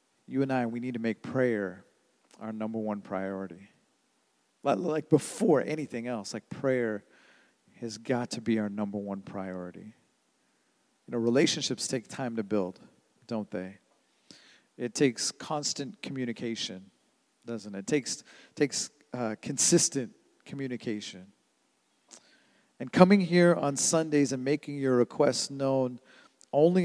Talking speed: 130 wpm